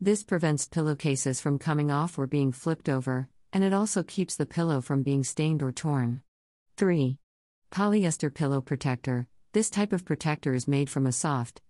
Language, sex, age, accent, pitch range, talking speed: English, female, 50-69, American, 130-160 Hz, 175 wpm